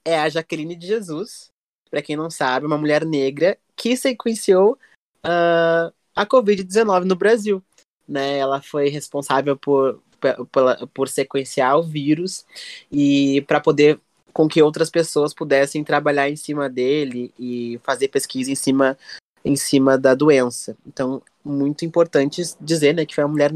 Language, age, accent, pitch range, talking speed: Portuguese, 20-39, Brazilian, 145-185 Hz, 150 wpm